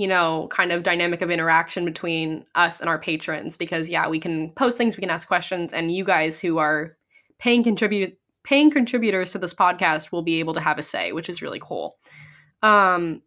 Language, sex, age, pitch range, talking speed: English, female, 10-29, 170-205 Hz, 210 wpm